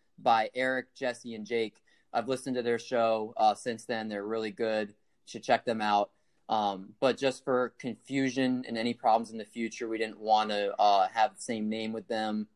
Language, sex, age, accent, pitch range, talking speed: English, male, 30-49, American, 110-125 Hz, 205 wpm